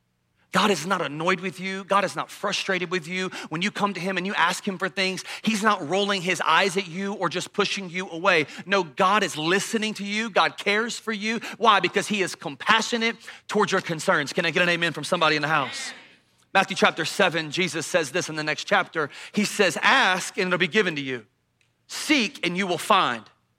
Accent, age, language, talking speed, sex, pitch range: American, 40-59, English, 220 wpm, male, 135-195 Hz